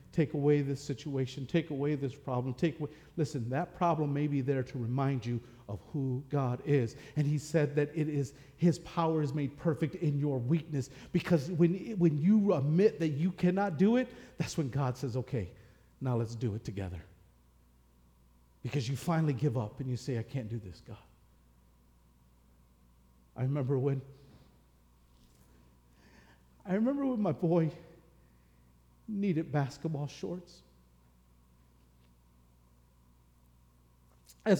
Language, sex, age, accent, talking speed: English, male, 50-69, American, 140 wpm